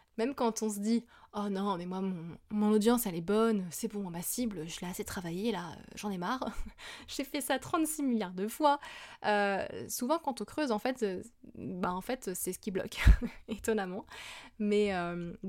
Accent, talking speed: French, 200 wpm